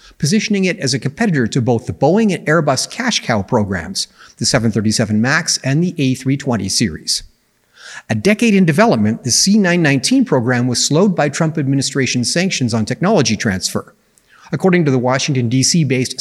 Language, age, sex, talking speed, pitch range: English, 50-69, male, 155 wpm, 125-175 Hz